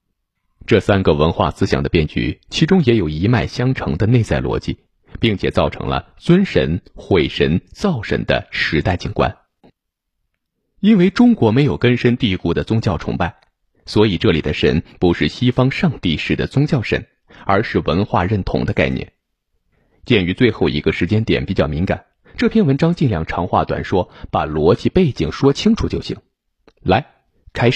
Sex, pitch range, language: male, 85-125 Hz, Chinese